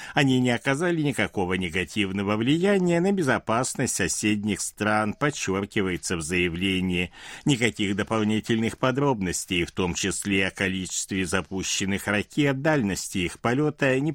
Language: Russian